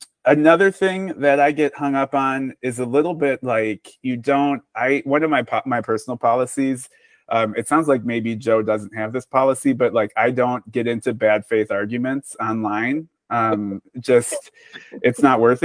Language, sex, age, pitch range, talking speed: English, male, 20-39, 105-135 Hz, 180 wpm